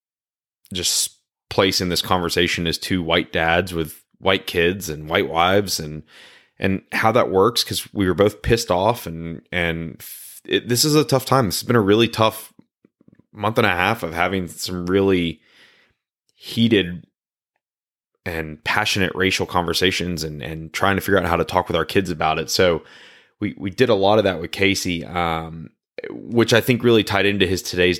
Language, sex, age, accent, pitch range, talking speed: English, male, 20-39, American, 80-95 Hz, 180 wpm